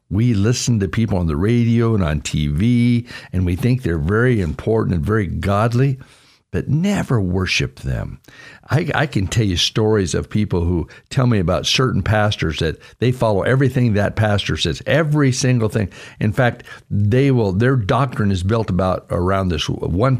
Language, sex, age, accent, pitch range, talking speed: English, male, 60-79, American, 90-130 Hz, 175 wpm